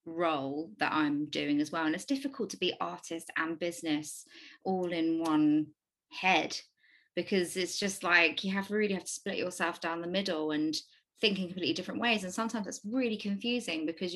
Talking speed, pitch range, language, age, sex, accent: 190 wpm, 180-220 Hz, English, 20-39, female, British